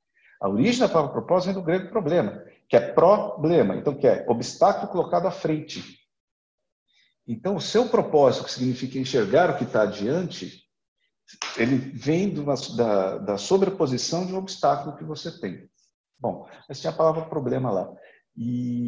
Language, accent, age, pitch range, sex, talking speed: Portuguese, Brazilian, 50-69, 130-205 Hz, male, 155 wpm